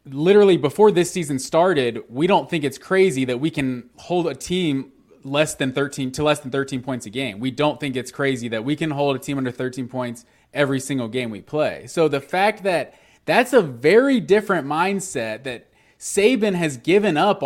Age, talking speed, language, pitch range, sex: 20-39, 205 wpm, English, 135-190 Hz, male